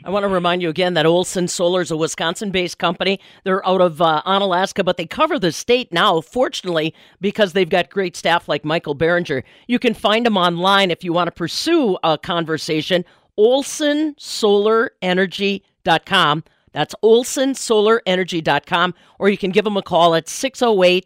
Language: English